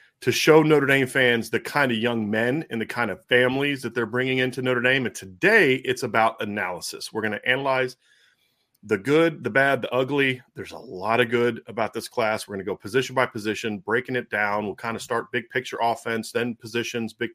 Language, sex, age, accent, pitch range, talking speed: English, male, 30-49, American, 110-130 Hz, 220 wpm